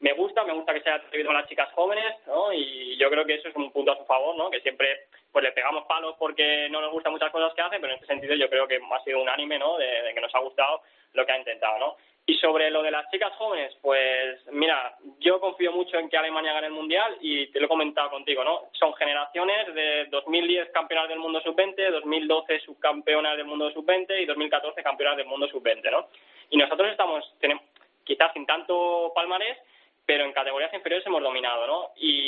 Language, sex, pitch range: Spanish, male, 145-175 Hz